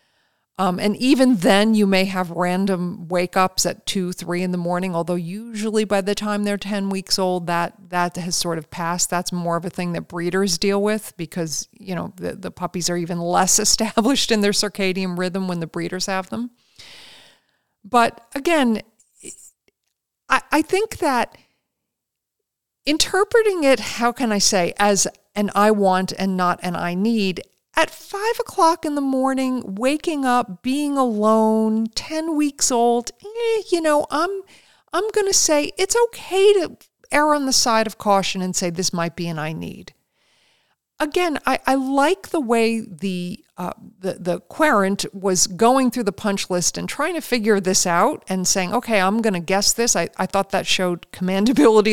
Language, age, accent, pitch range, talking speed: English, 50-69, American, 185-265 Hz, 175 wpm